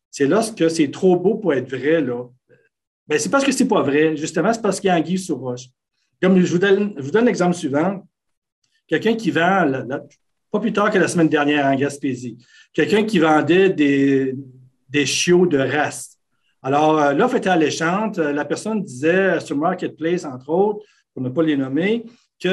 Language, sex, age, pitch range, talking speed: French, male, 60-79, 150-205 Hz, 185 wpm